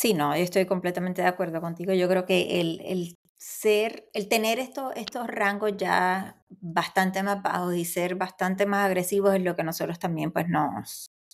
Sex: female